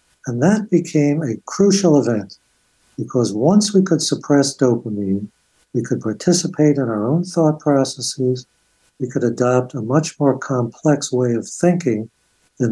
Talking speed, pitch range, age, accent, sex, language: 145 wpm, 115-150 Hz, 60-79, American, male, English